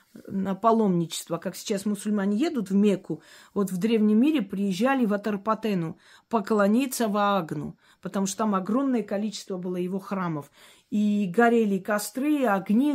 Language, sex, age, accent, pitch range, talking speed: Russian, female, 40-59, native, 195-245 Hz, 140 wpm